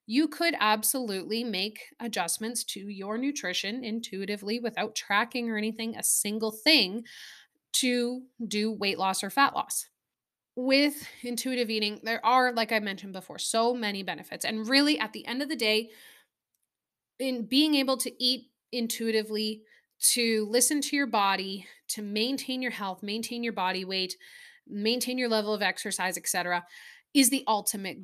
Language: English